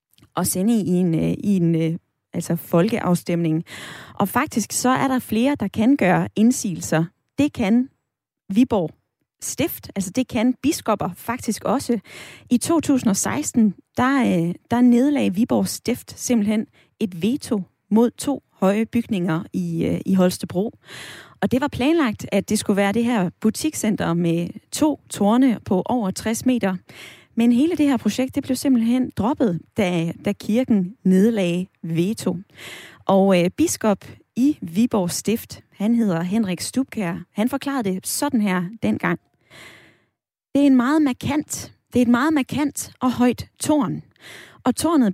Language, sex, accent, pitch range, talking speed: Danish, female, native, 185-250 Hz, 145 wpm